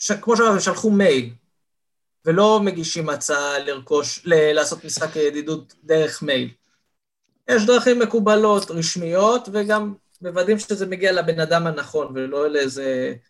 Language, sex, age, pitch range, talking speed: Hebrew, male, 20-39, 160-215 Hz, 125 wpm